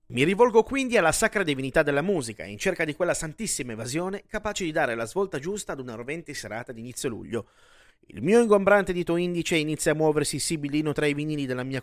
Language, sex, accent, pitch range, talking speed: Italian, male, native, 130-190 Hz, 210 wpm